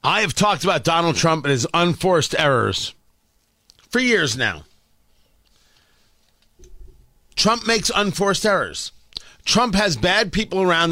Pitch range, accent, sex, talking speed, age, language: 165-230 Hz, American, male, 120 wpm, 40-59, English